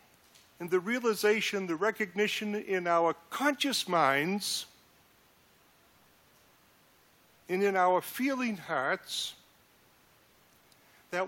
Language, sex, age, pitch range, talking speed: English, male, 50-69, 195-250 Hz, 80 wpm